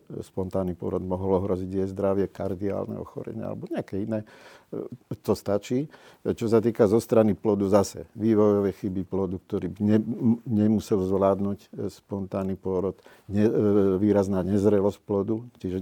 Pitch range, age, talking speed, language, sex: 95-110 Hz, 50-69, 130 wpm, Slovak, male